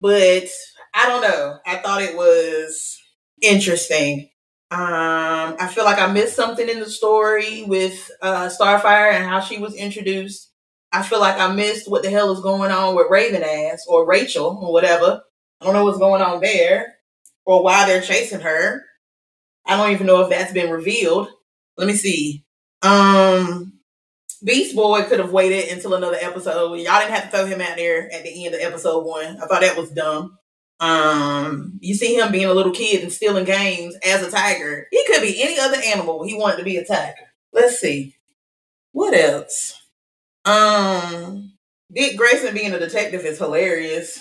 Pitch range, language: 170-210 Hz, English